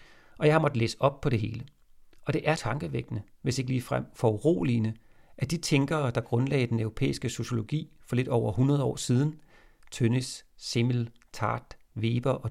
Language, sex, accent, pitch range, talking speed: Danish, male, native, 115-145 Hz, 175 wpm